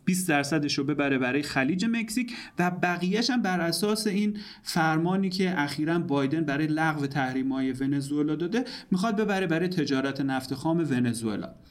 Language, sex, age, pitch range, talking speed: Persian, male, 30-49, 135-175 Hz, 145 wpm